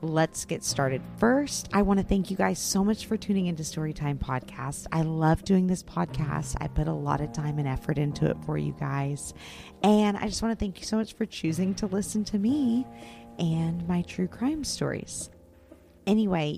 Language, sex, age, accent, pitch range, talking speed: English, female, 30-49, American, 150-195 Hz, 205 wpm